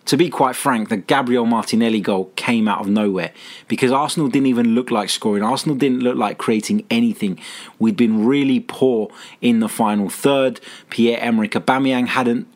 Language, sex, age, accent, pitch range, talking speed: English, male, 20-39, British, 110-135 Hz, 170 wpm